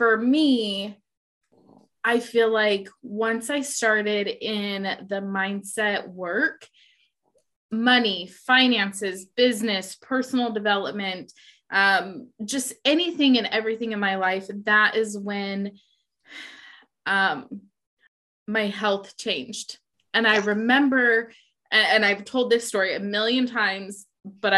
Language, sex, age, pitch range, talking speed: English, female, 20-39, 200-245 Hz, 105 wpm